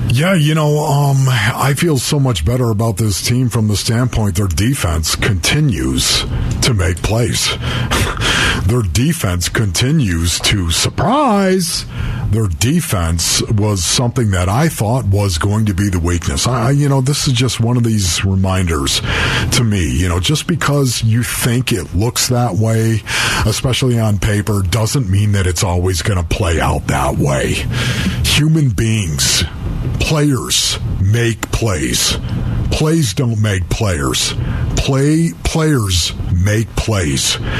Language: English